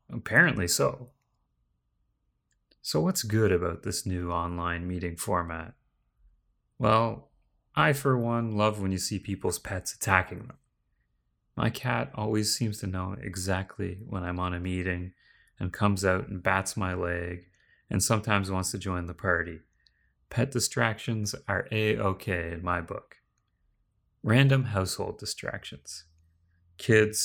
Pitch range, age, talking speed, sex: 90-105 Hz, 30-49, 135 wpm, male